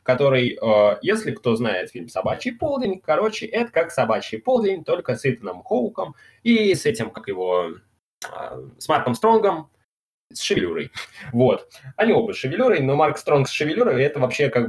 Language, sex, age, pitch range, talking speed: Russian, male, 20-39, 115-155 Hz, 160 wpm